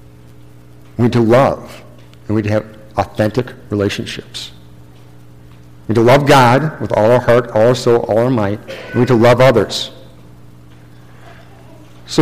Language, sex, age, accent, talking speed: English, male, 50-69, American, 155 wpm